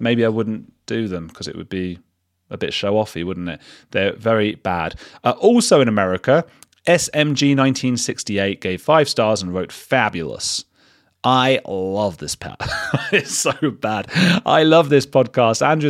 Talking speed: 150 wpm